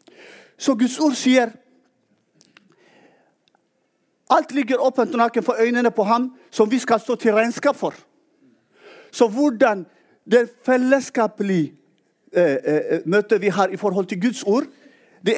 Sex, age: male, 50-69